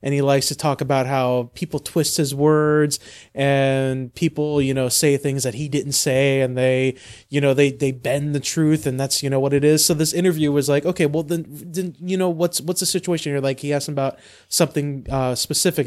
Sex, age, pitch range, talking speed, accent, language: male, 20-39, 135-165 Hz, 230 wpm, American, English